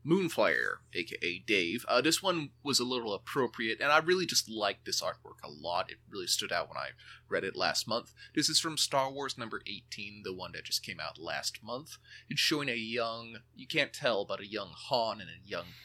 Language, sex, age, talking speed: English, male, 30-49, 220 wpm